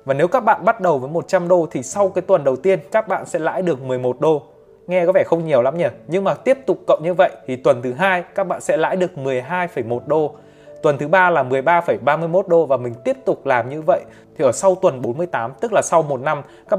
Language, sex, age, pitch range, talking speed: Vietnamese, male, 20-39, 130-185 Hz, 255 wpm